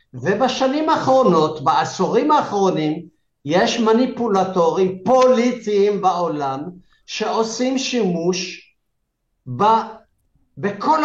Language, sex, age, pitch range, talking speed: Hebrew, male, 50-69, 180-240 Hz, 65 wpm